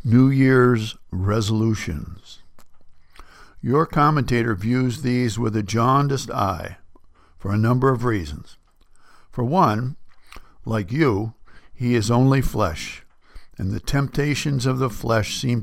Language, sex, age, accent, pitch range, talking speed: English, male, 60-79, American, 100-130 Hz, 120 wpm